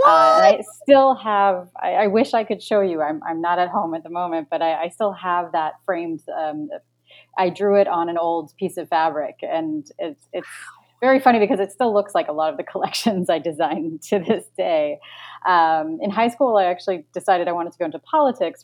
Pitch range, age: 155-195 Hz, 30-49